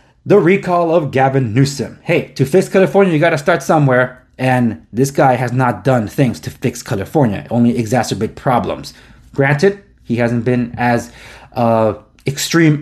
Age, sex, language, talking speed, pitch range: 30-49, male, English, 160 wpm, 125-160 Hz